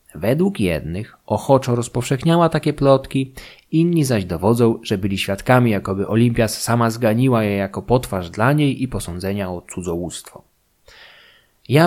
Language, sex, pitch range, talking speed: Polish, male, 95-130 Hz, 130 wpm